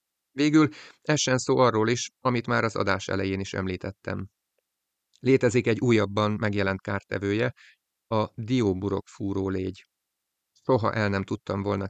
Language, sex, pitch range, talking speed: Hungarian, male, 100-120 Hz, 130 wpm